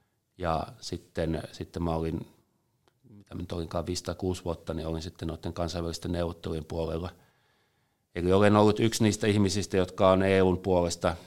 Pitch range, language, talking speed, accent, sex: 85-105 Hz, Finnish, 140 wpm, native, male